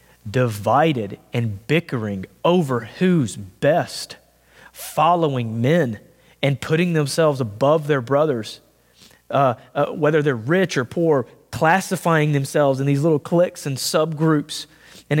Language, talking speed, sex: English, 120 wpm, male